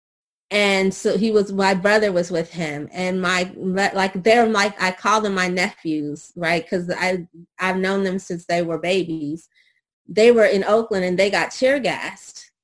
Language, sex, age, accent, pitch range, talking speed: English, female, 30-49, American, 175-215 Hz, 175 wpm